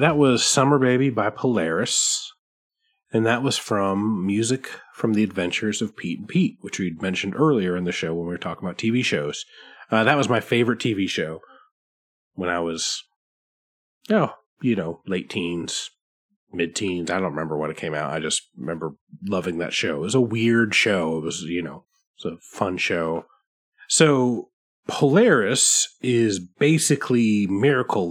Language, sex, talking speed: English, male, 170 wpm